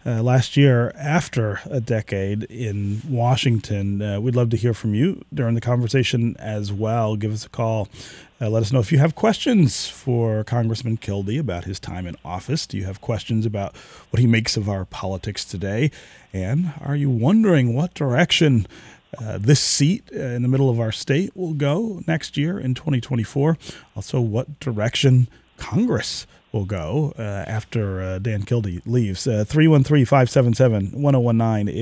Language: English